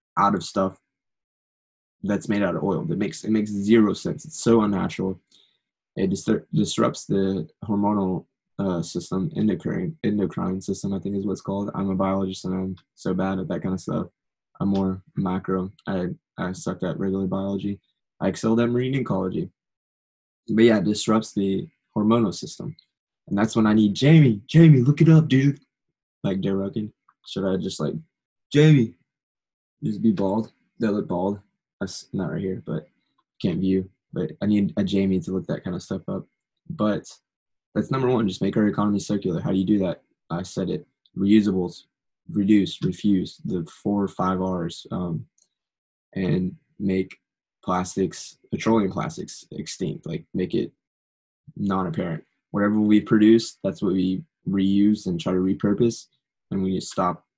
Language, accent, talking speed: English, American, 170 wpm